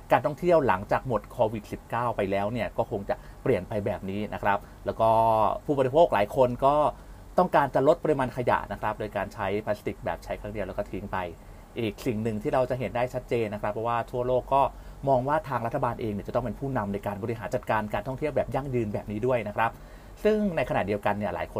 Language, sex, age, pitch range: Thai, male, 30-49, 105-130 Hz